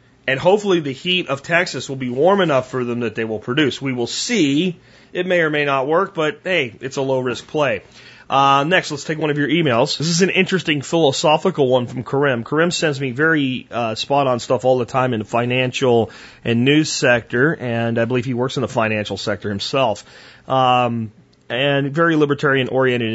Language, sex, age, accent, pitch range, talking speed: French, male, 30-49, American, 120-155 Hz, 200 wpm